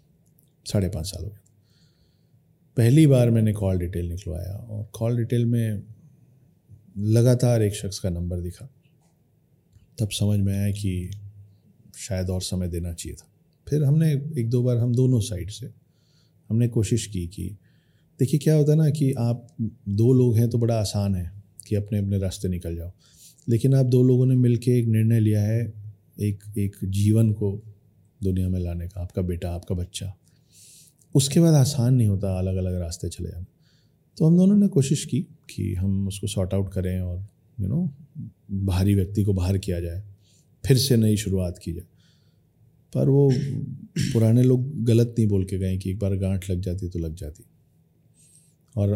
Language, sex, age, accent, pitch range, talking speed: Hindi, male, 30-49, native, 95-125 Hz, 175 wpm